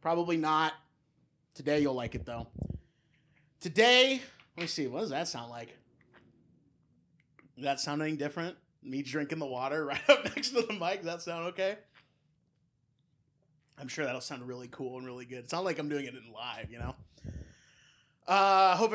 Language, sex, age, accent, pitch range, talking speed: English, male, 20-39, American, 130-175 Hz, 180 wpm